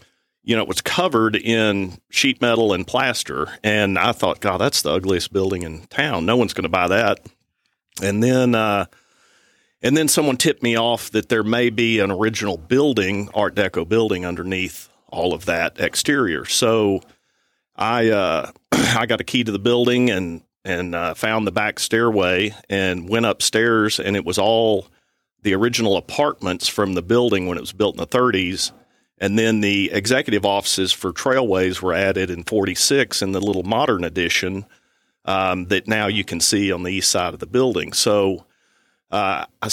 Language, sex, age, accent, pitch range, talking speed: English, male, 40-59, American, 95-115 Hz, 180 wpm